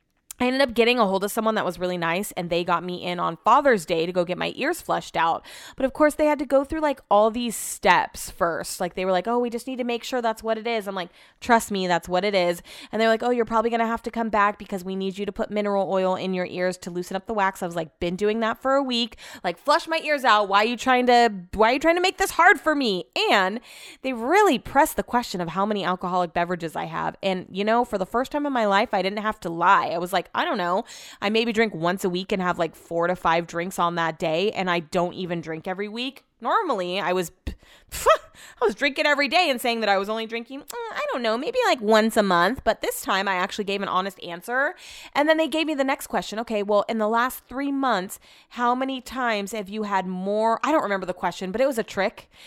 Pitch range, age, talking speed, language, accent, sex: 185-245 Hz, 20-39, 275 wpm, English, American, female